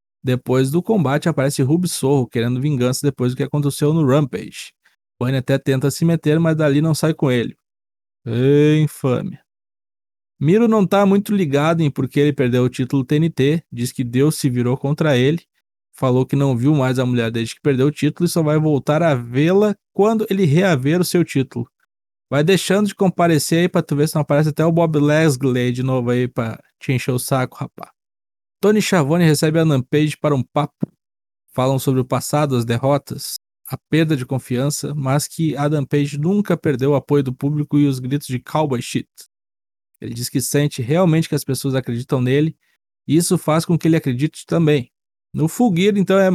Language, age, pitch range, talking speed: Portuguese, 20-39, 135-175 Hz, 195 wpm